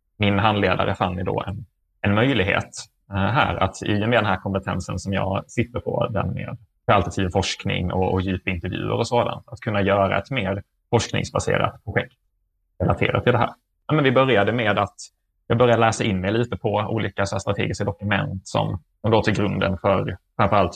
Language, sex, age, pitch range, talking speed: Swedish, male, 20-39, 95-115 Hz, 175 wpm